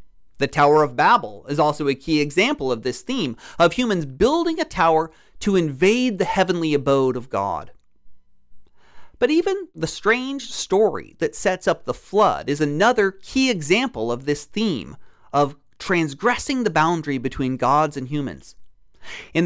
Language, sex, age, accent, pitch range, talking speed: English, male, 40-59, American, 145-210 Hz, 155 wpm